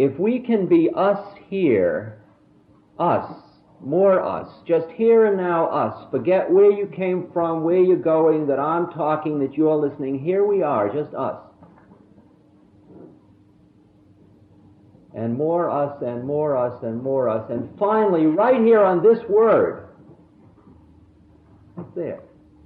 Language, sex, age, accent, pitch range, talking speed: English, male, 50-69, American, 100-170 Hz, 130 wpm